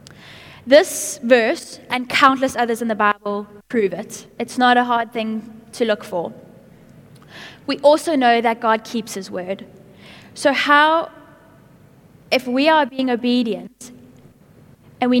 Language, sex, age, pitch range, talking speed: English, female, 10-29, 220-270 Hz, 140 wpm